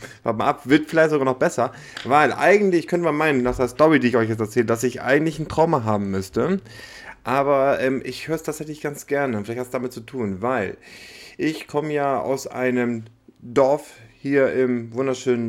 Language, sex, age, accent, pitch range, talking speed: German, male, 30-49, German, 115-140 Hz, 205 wpm